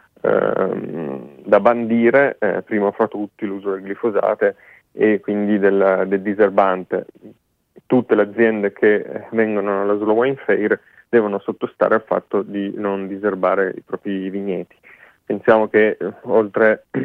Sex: male